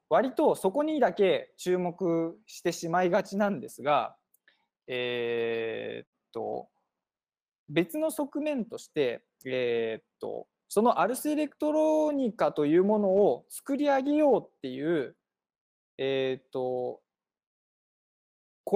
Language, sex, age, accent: Japanese, male, 20-39, native